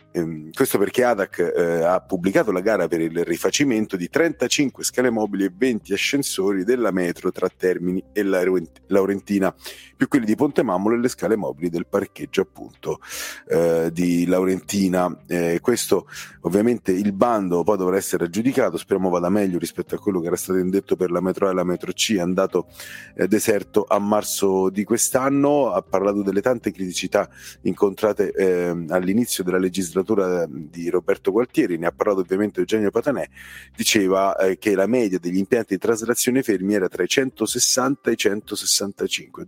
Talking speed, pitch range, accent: 165 wpm, 90-110 Hz, native